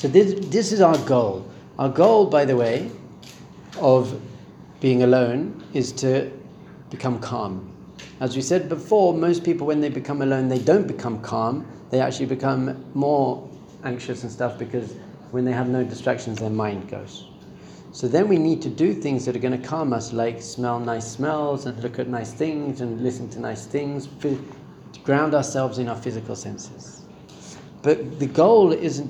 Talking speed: 175 wpm